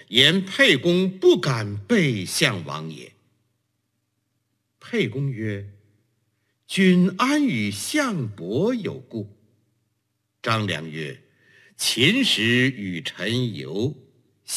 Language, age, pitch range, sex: Chinese, 60-79, 105-155 Hz, male